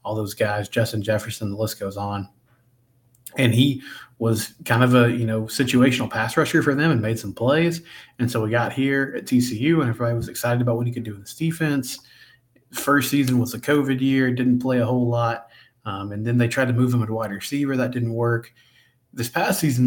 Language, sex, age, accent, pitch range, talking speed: English, male, 20-39, American, 115-130 Hz, 220 wpm